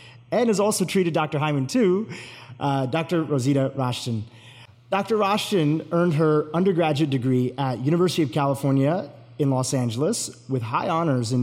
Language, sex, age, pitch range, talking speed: English, male, 30-49, 120-155 Hz, 145 wpm